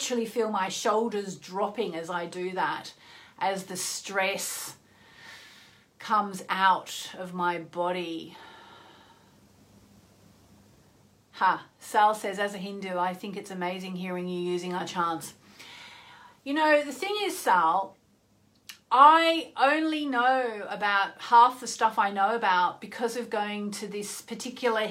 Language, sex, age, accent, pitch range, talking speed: English, female, 40-59, Australian, 190-245 Hz, 130 wpm